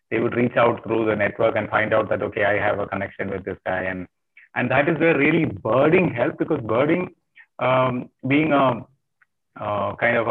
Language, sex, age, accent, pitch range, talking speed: English, male, 30-49, Indian, 105-130 Hz, 205 wpm